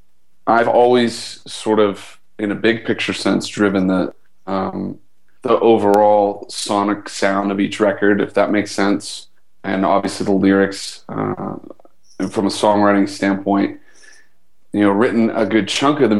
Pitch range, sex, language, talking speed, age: 95-105 Hz, male, English, 150 wpm, 30-49